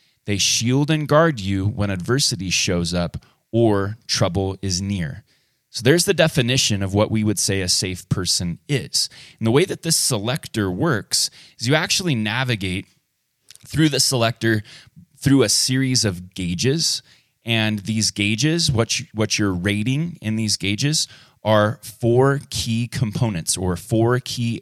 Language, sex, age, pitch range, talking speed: English, male, 20-39, 105-135 Hz, 150 wpm